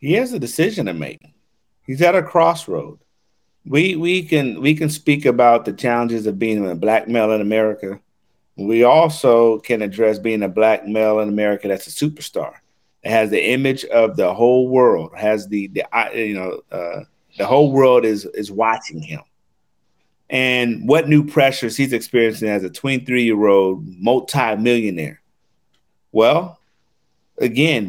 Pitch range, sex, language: 110-160 Hz, male, English